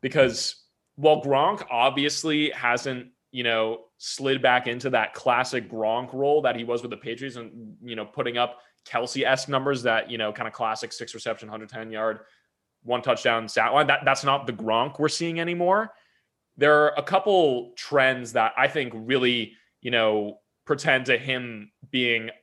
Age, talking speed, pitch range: 20-39, 170 wpm, 115-145 Hz